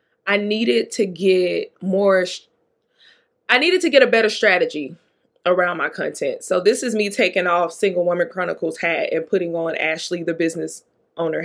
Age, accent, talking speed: 20-39, American, 170 wpm